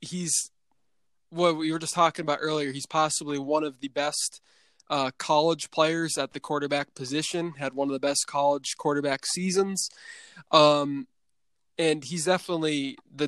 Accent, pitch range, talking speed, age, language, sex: American, 145-175 Hz, 155 wpm, 20-39, English, male